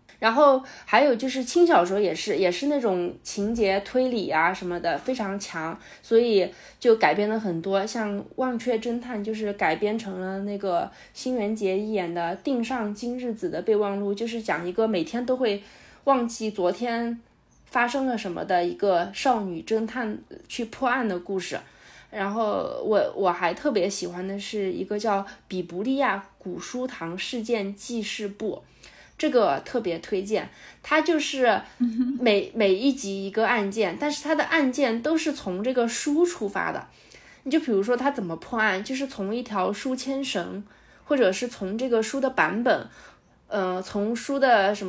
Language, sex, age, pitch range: Chinese, female, 20-39, 195-250 Hz